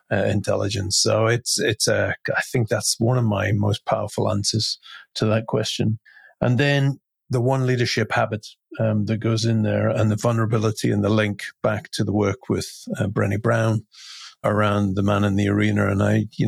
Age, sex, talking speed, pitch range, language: 40-59, male, 195 wpm, 100-115 Hz, English